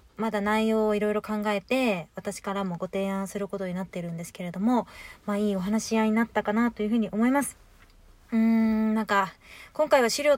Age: 20-39